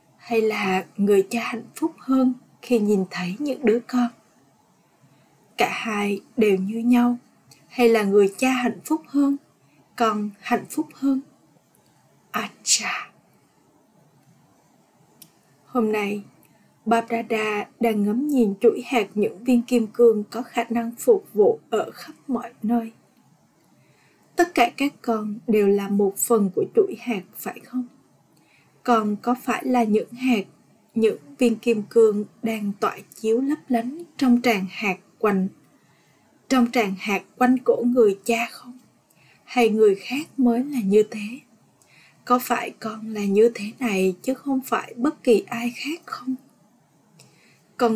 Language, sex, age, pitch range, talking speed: Vietnamese, female, 20-39, 215-250 Hz, 150 wpm